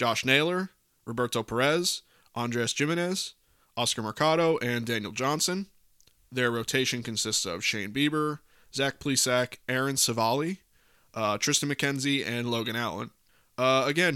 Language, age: English, 20-39